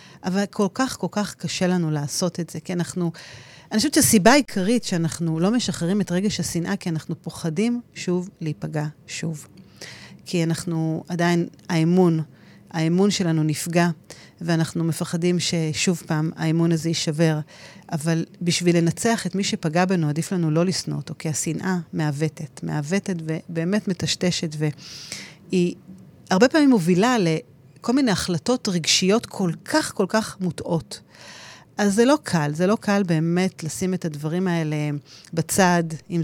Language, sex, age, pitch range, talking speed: Hebrew, female, 40-59, 160-195 Hz, 145 wpm